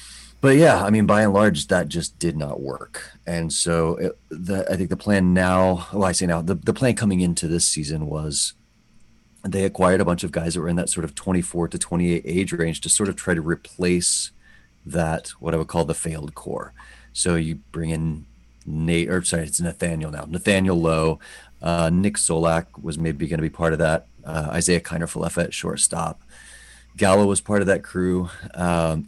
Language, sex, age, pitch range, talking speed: English, male, 30-49, 80-95 Hz, 200 wpm